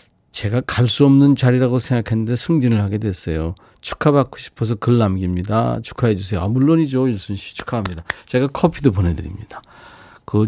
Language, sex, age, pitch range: Korean, male, 40-59, 105-140 Hz